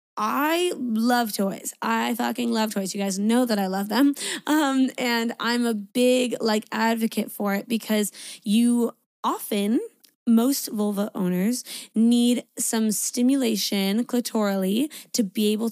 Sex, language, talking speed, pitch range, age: female, English, 135 wpm, 210-275 Hz, 20-39